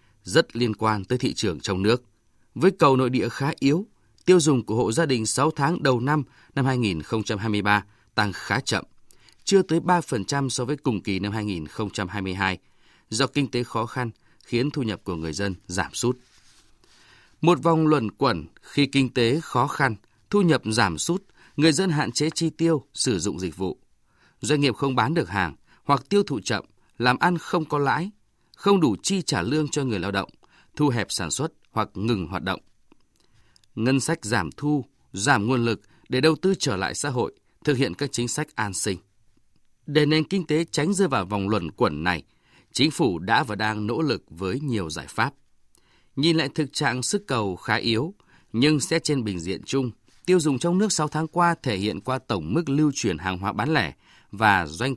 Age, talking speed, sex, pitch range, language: 20-39, 200 wpm, male, 105-150 Hz, Vietnamese